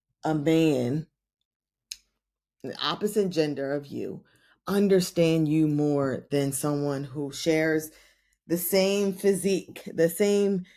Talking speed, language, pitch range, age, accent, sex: 105 wpm, English, 145-185 Hz, 20-39, American, female